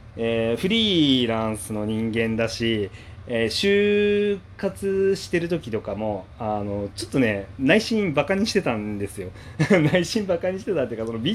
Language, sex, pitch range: Japanese, male, 100-130 Hz